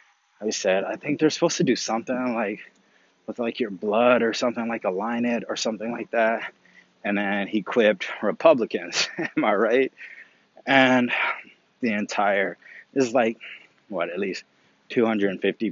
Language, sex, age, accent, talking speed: English, male, 30-49, American, 155 wpm